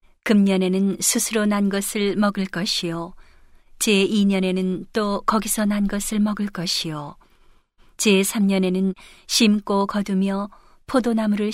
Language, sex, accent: Korean, female, native